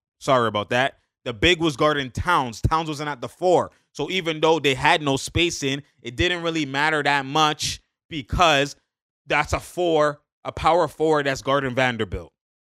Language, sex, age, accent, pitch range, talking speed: English, male, 20-39, American, 130-160 Hz, 175 wpm